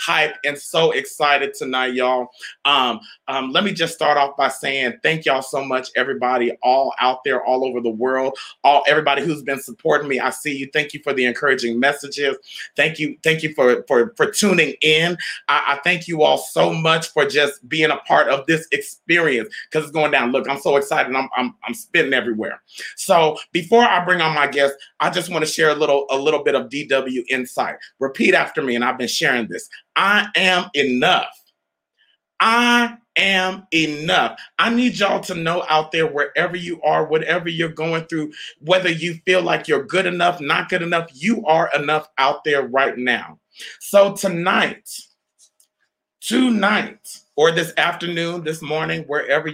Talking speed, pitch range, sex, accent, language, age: 185 wpm, 135-175 Hz, male, American, English, 30-49